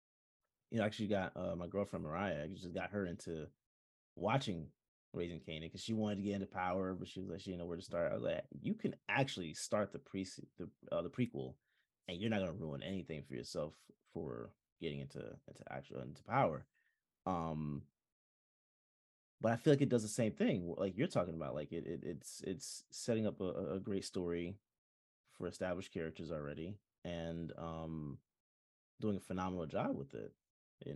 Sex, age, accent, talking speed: male, 30-49, American, 195 wpm